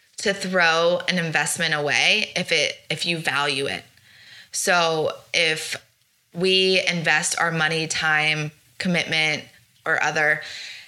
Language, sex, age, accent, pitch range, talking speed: English, female, 20-39, American, 155-210 Hz, 115 wpm